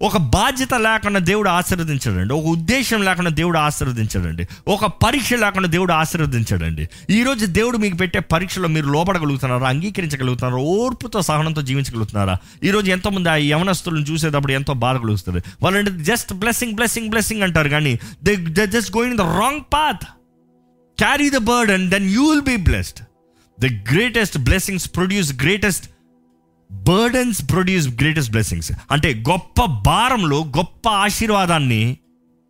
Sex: male